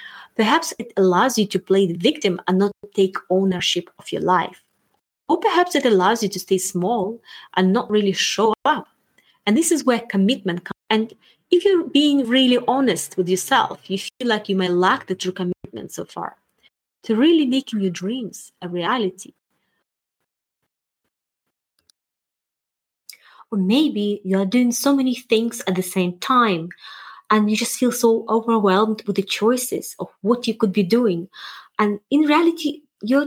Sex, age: female, 30-49